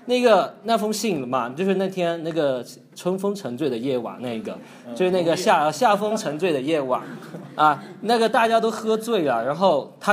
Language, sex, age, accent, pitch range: Chinese, male, 20-39, native, 140-210 Hz